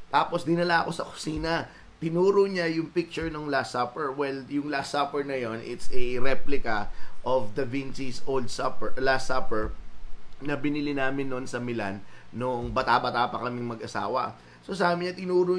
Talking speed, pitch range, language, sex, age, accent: 165 wpm, 115-170 Hz, Filipino, male, 20-39, native